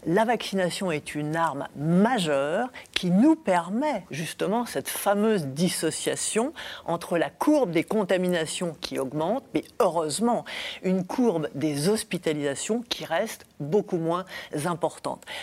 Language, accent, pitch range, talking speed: French, French, 155-225 Hz, 120 wpm